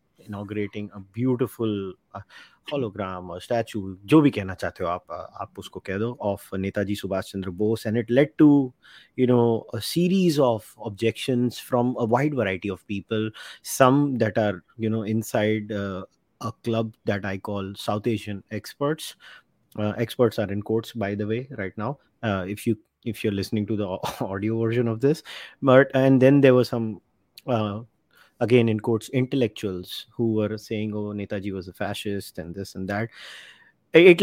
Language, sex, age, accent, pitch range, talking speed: English, male, 30-49, Indian, 105-135 Hz, 155 wpm